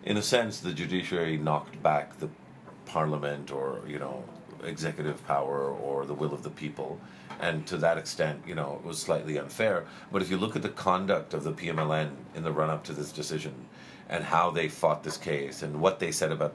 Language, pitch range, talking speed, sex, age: English, 75-95 Hz, 205 wpm, male, 50-69